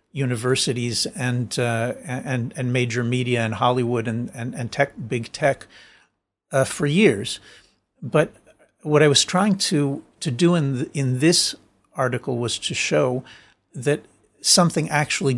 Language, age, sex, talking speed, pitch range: English, 50-69, male, 145 wpm, 120-150 Hz